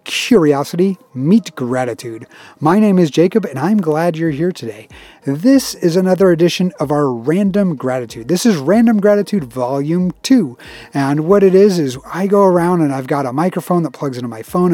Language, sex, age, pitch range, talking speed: English, male, 30-49, 145-190 Hz, 185 wpm